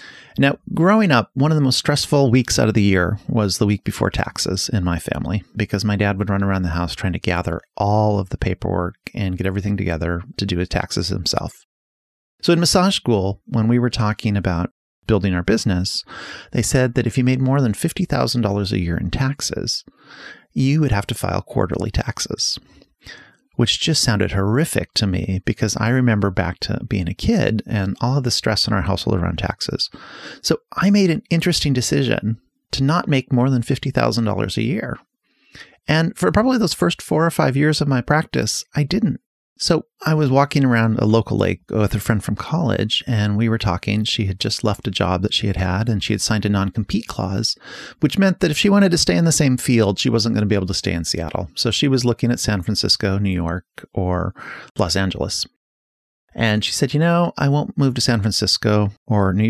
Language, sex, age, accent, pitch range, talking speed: English, male, 30-49, American, 100-135 Hz, 210 wpm